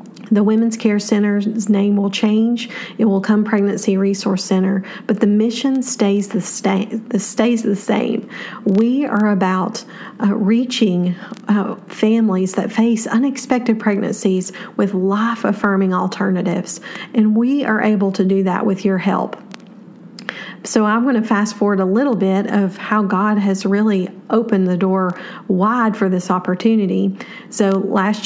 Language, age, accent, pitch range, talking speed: English, 40-59, American, 195-225 Hz, 140 wpm